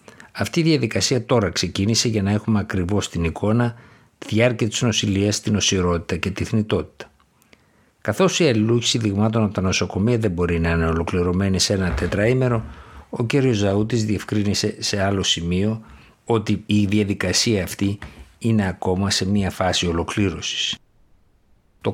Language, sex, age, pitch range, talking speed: Greek, male, 60-79, 90-115 Hz, 145 wpm